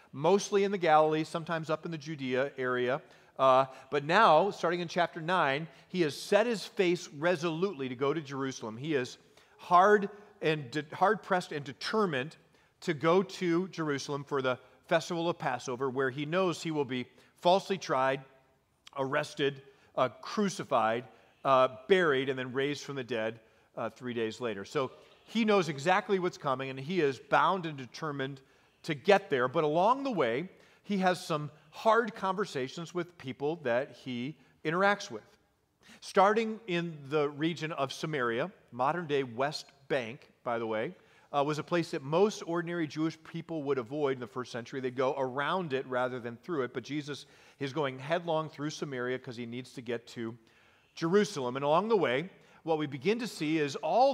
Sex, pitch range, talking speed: male, 135-175 Hz, 175 wpm